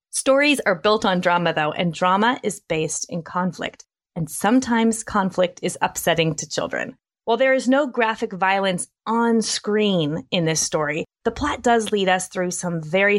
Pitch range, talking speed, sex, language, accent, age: 180-235 Hz, 175 wpm, female, English, American, 30-49